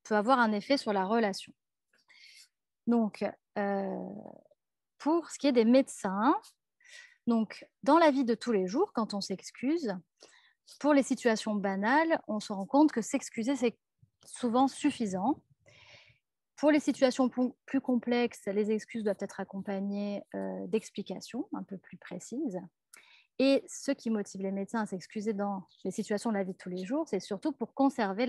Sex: female